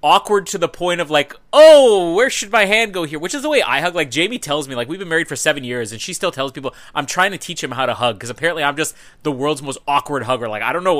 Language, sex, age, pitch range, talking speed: English, male, 30-49, 125-170 Hz, 305 wpm